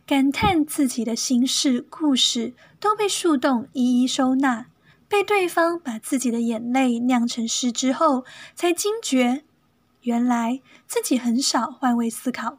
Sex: female